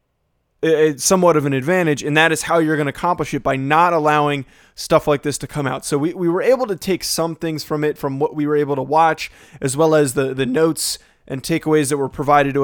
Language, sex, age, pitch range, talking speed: English, male, 20-39, 140-165 Hz, 250 wpm